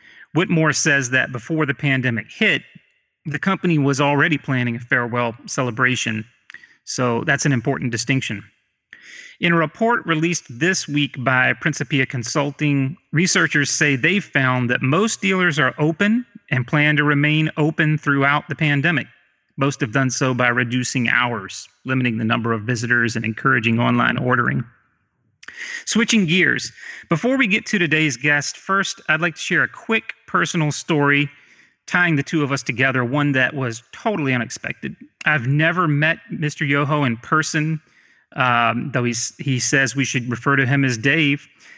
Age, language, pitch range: 30-49, English, 125-155 Hz